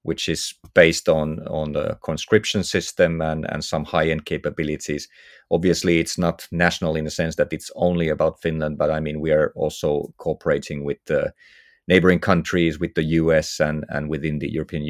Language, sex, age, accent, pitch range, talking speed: English, male, 30-49, Finnish, 80-90 Hz, 175 wpm